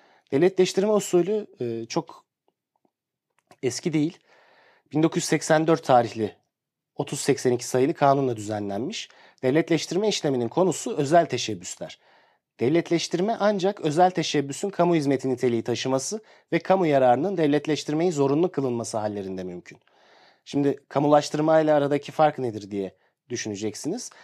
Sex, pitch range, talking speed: male, 125-170 Hz, 100 wpm